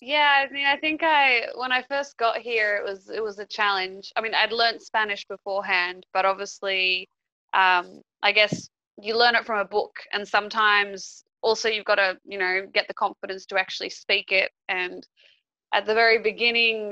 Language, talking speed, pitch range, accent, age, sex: English, 190 wpm, 195-230 Hz, Australian, 20-39, female